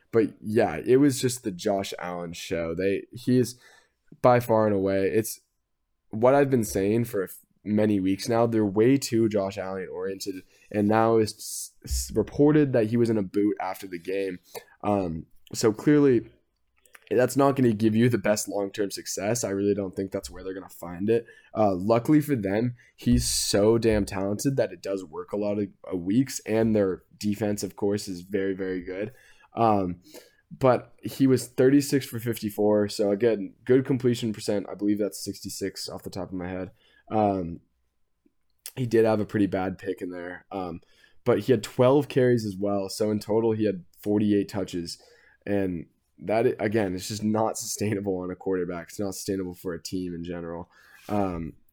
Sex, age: male, 10-29